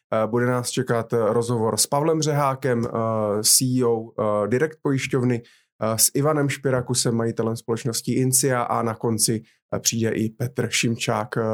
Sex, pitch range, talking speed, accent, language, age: male, 115-140 Hz, 115 wpm, native, Czech, 30-49